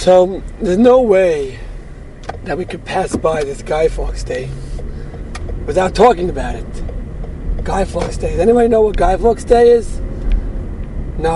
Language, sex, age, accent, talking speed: English, male, 30-49, American, 155 wpm